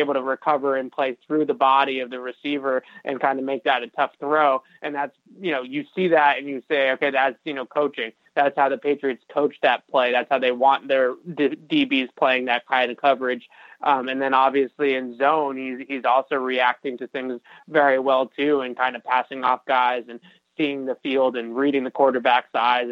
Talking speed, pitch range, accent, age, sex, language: 215 wpm, 125-145 Hz, American, 20-39, male, English